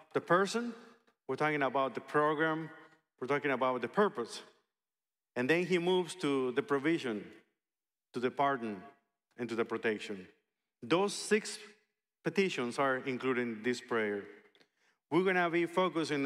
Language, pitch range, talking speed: English, 125-165 Hz, 145 wpm